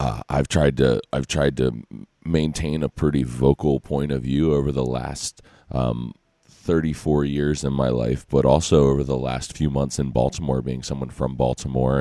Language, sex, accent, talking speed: English, male, American, 180 wpm